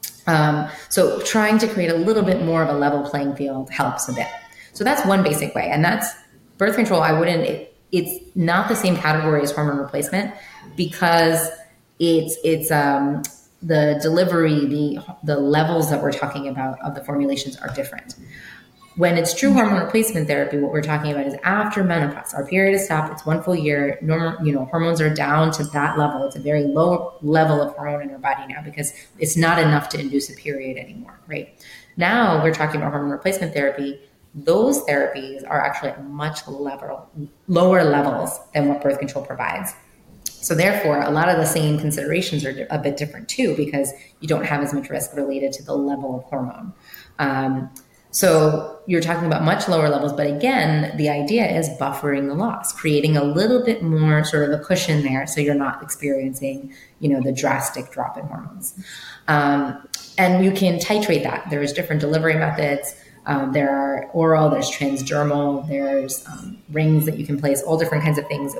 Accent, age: American, 20-39